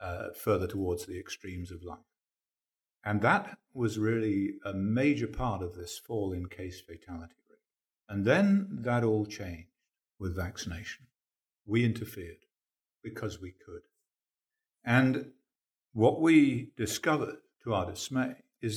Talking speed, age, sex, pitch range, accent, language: 130 wpm, 50-69, male, 100-130 Hz, British, English